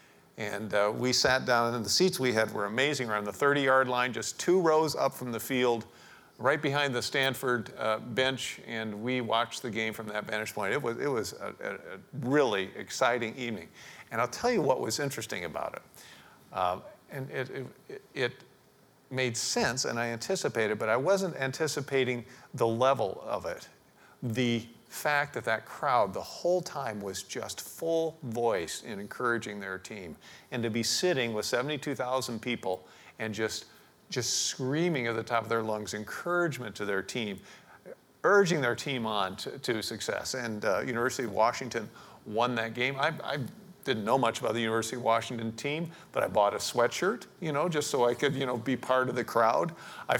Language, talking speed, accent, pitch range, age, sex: English, 185 wpm, American, 115-140 Hz, 50-69, male